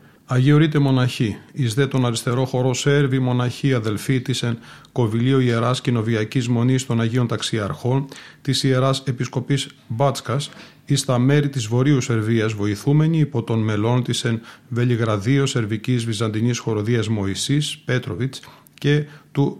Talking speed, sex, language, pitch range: 120 wpm, male, Greek, 115-140 Hz